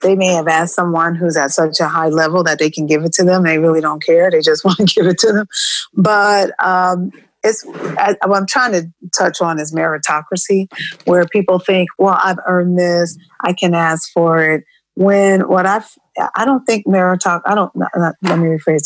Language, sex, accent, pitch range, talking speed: English, female, American, 170-210 Hz, 215 wpm